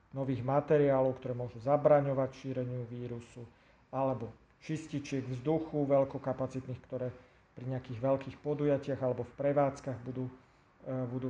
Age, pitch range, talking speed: 40-59, 125-140 Hz, 110 wpm